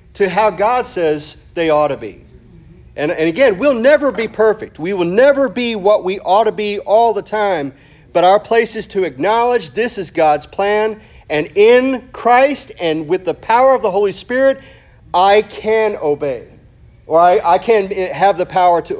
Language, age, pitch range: English, 40-59, 160-235 Hz